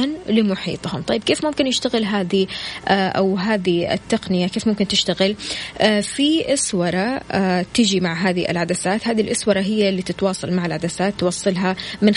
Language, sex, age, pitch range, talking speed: Arabic, female, 20-39, 195-235 Hz, 135 wpm